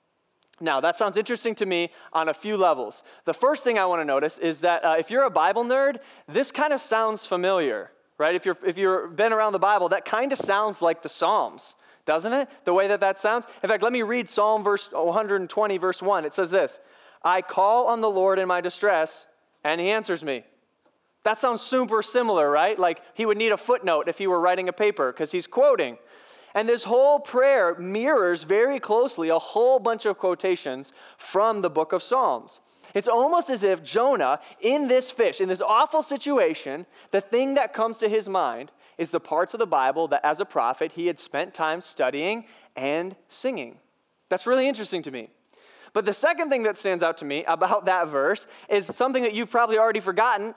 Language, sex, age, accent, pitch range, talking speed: English, male, 20-39, American, 175-245 Hz, 210 wpm